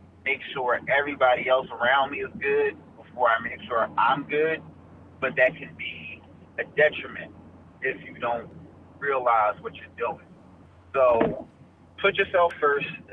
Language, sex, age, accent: English, male, 30-49, American